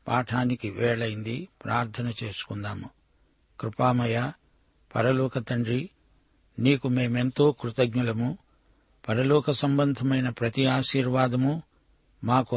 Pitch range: 120-135 Hz